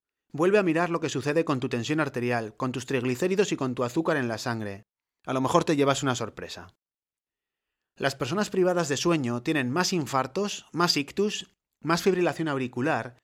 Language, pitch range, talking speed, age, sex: Spanish, 125-165 Hz, 180 wpm, 30-49, male